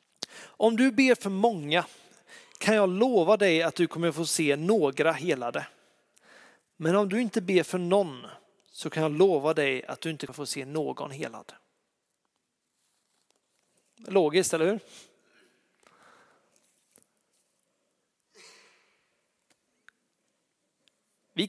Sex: male